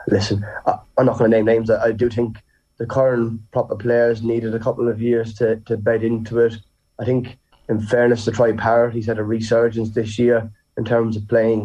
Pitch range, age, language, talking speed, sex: 110-120 Hz, 20-39, English, 220 wpm, male